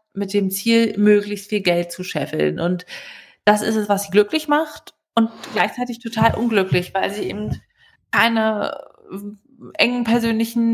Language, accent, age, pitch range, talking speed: German, German, 20-39, 185-215 Hz, 145 wpm